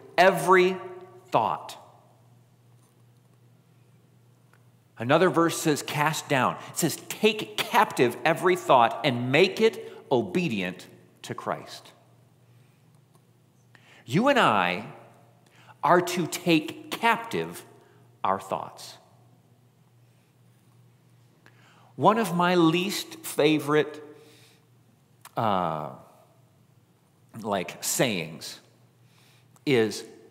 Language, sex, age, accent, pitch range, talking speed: English, male, 50-69, American, 120-180 Hz, 75 wpm